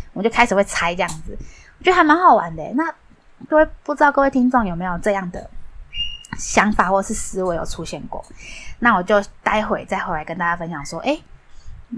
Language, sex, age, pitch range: Chinese, female, 10-29, 185-260 Hz